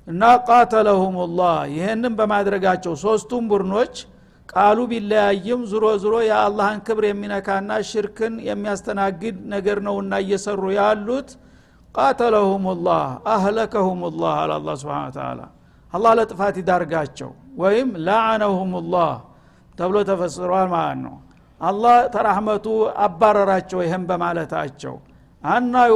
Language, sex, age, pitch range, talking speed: Amharic, male, 60-79, 190-220 Hz, 90 wpm